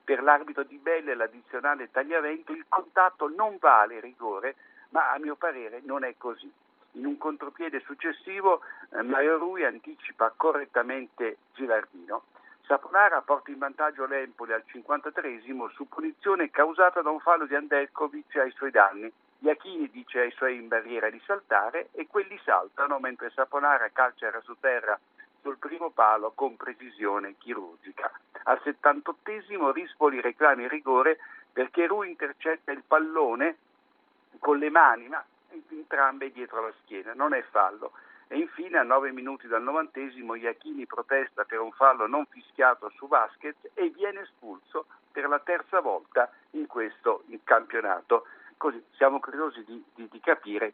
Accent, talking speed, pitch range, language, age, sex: native, 145 wpm, 130-190 Hz, Italian, 60-79, male